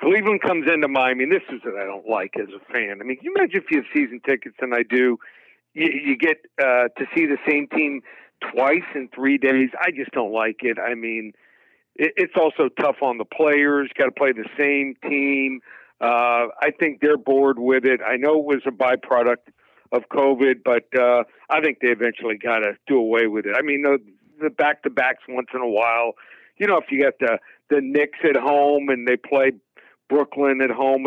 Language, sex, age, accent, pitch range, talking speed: English, male, 50-69, American, 125-150 Hz, 215 wpm